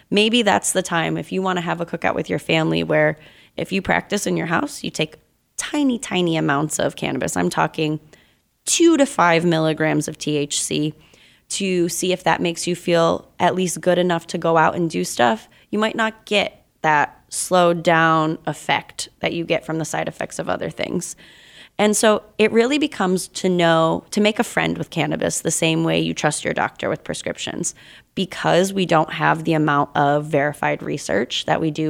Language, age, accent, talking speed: English, 20-39, American, 200 wpm